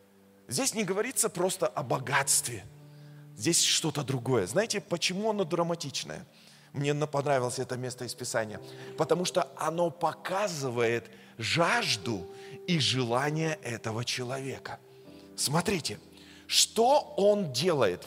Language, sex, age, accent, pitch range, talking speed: Russian, male, 20-39, native, 145-220 Hz, 105 wpm